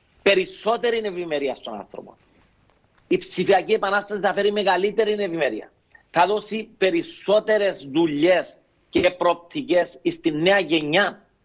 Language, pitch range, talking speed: Greek, 155-205 Hz, 105 wpm